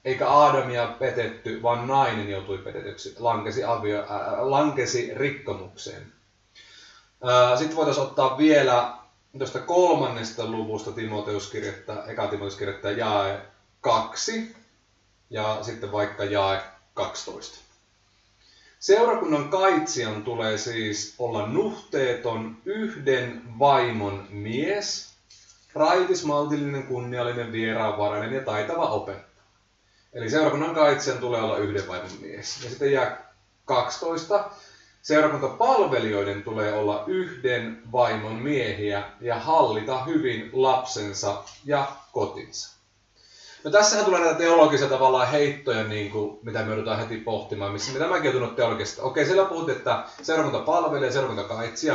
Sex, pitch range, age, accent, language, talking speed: male, 105-145 Hz, 30-49, native, Finnish, 105 wpm